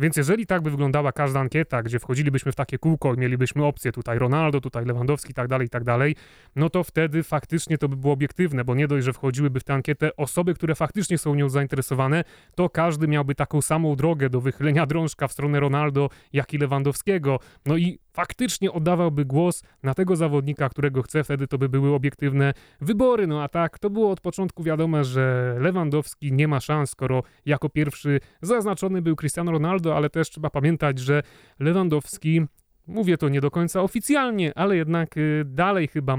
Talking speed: 190 wpm